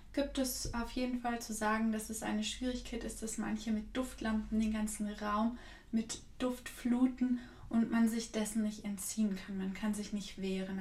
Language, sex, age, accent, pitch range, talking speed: German, female, 20-39, German, 205-225 Hz, 190 wpm